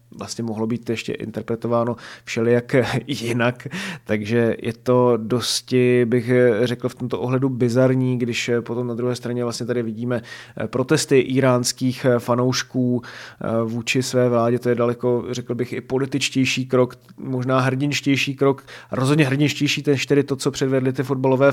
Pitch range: 120-135 Hz